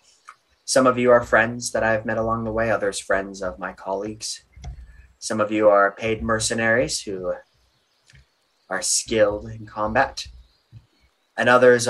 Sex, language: male, English